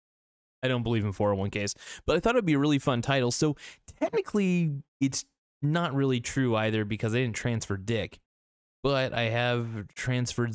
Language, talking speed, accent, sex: English, 170 wpm, American, male